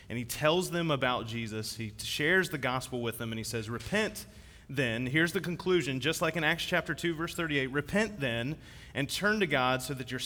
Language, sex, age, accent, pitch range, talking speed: English, male, 30-49, American, 110-155 Hz, 215 wpm